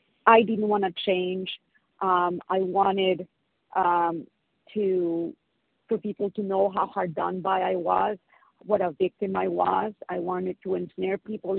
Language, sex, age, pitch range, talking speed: English, female, 40-59, 180-205 Hz, 155 wpm